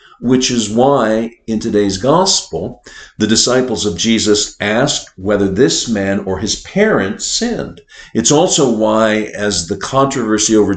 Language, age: English, 50-69